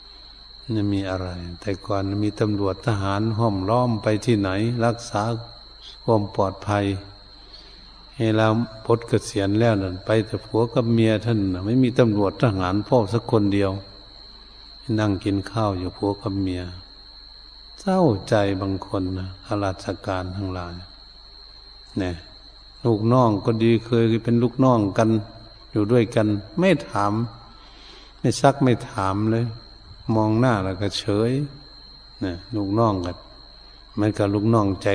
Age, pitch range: 70-89, 95-110 Hz